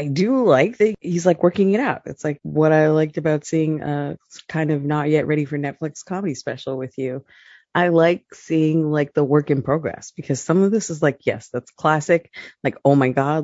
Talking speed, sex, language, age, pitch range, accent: 220 wpm, female, English, 30-49, 130-180 Hz, American